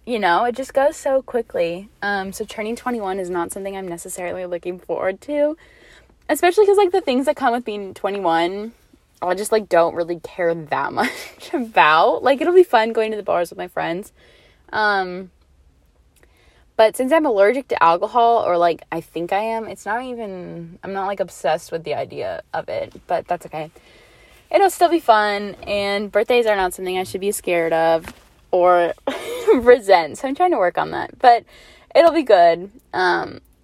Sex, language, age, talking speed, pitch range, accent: female, English, 20-39, 185 wpm, 175-265 Hz, American